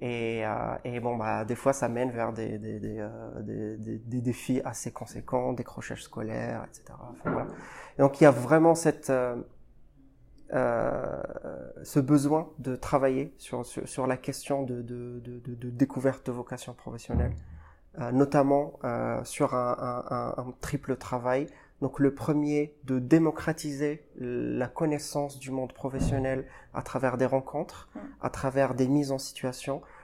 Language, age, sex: French, 30-49, male